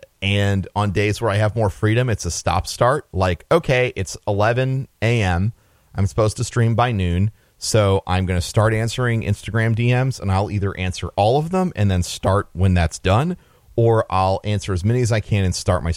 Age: 30-49